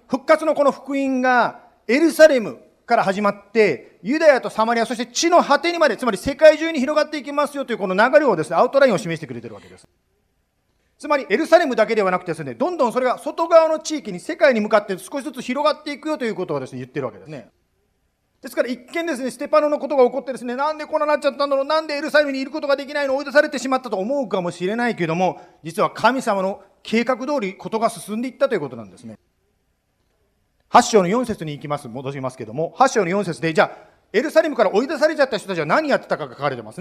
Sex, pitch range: male, 175-285 Hz